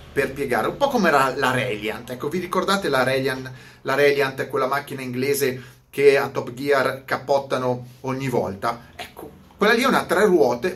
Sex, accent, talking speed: male, native, 180 wpm